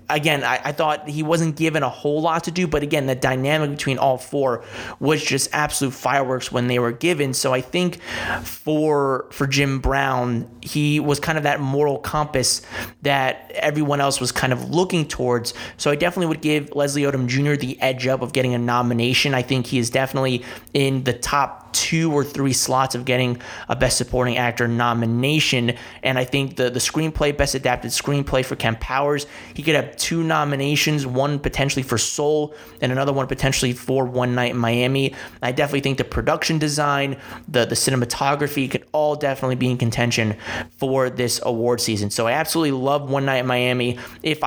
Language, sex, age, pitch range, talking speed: English, male, 30-49, 125-150 Hz, 190 wpm